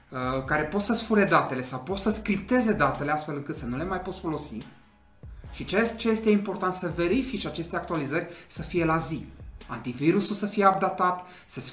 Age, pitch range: 30-49, 150-180 Hz